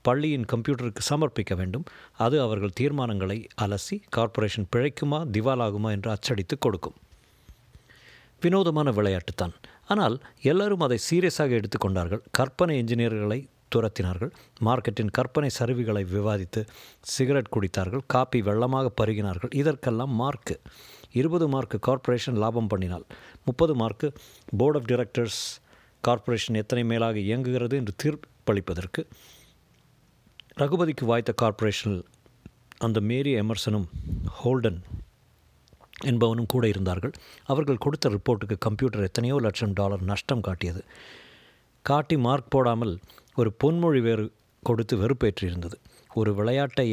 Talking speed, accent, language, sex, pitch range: 100 wpm, native, Tamil, male, 105-135 Hz